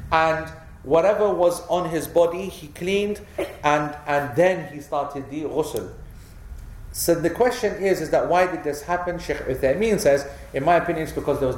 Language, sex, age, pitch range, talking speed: English, male, 30-49, 135-175 Hz, 180 wpm